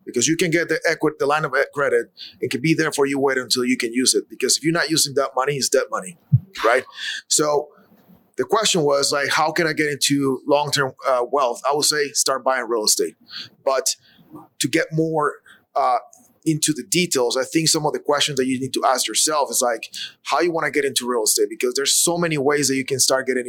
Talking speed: 235 wpm